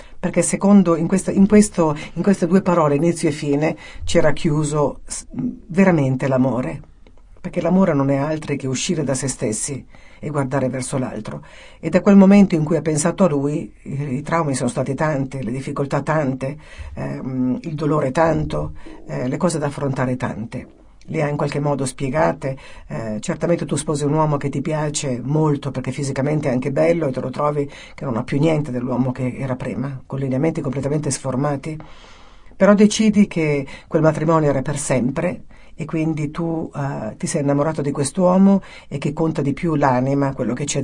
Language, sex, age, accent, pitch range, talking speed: Italian, female, 50-69, native, 135-165 Hz, 180 wpm